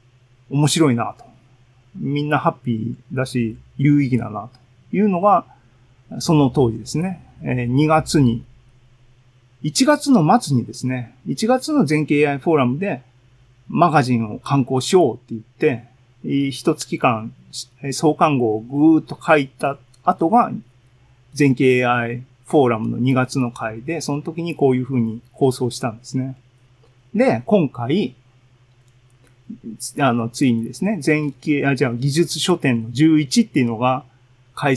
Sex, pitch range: male, 125-145 Hz